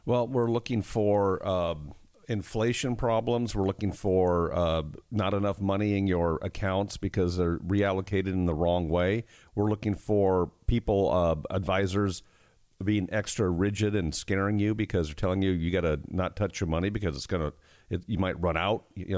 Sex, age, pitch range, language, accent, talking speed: male, 50-69, 95-115 Hz, English, American, 180 wpm